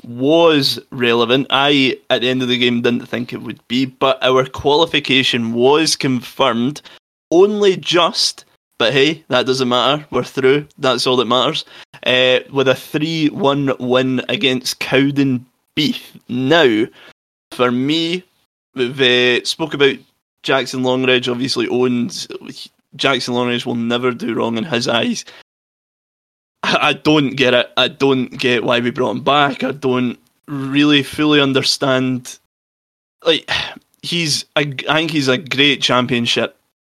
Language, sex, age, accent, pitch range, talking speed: English, male, 20-39, British, 125-140 Hz, 140 wpm